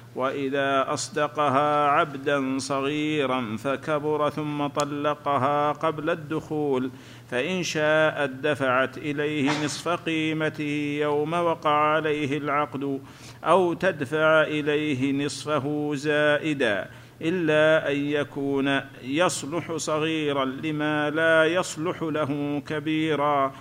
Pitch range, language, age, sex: 140-155 Hz, Arabic, 50-69, male